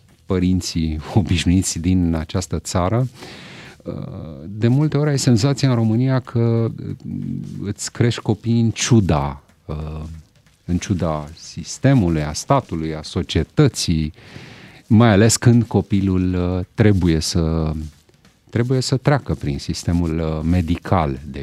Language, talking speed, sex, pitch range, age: Romanian, 105 wpm, male, 85-115 Hz, 40-59